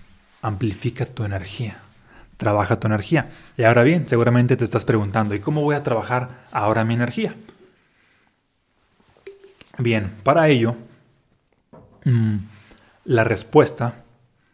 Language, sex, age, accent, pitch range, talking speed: Spanish, male, 30-49, Mexican, 110-135 Hz, 105 wpm